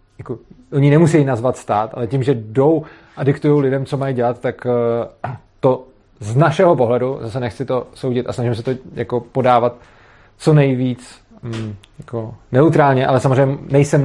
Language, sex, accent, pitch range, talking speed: Czech, male, native, 120-145 Hz, 160 wpm